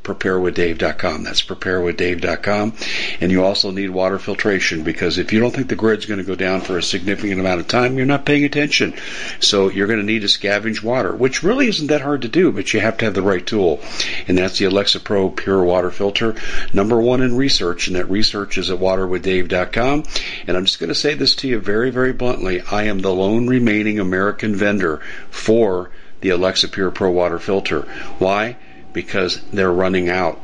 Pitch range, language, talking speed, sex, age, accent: 95-115 Hz, English, 200 wpm, male, 50-69, American